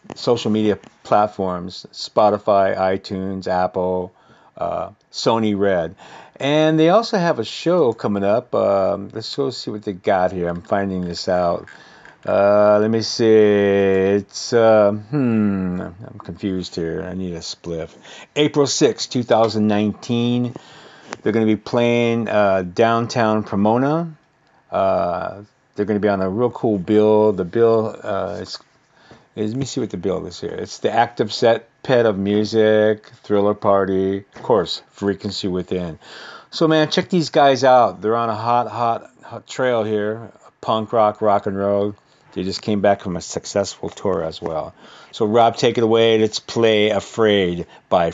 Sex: male